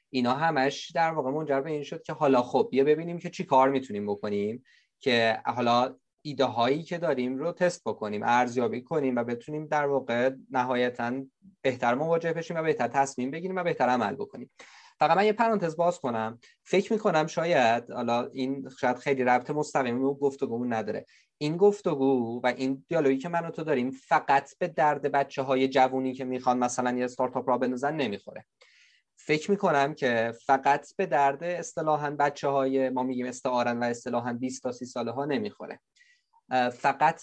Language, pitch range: Persian, 125-160 Hz